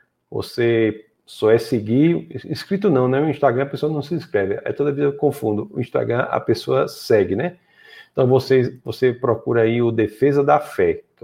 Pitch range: 115-145 Hz